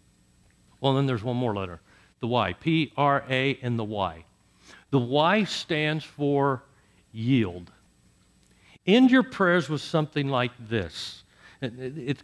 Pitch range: 115-175 Hz